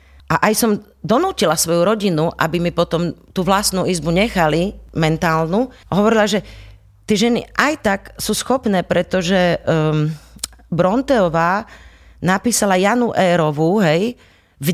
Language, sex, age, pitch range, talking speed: Slovak, female, 40-59, 160-220 Hz, 120 wpm